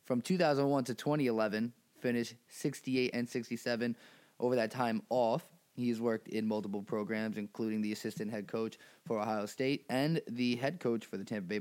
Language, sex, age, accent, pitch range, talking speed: English, male, 20-39, American, 110-145 Hz, 170 wpm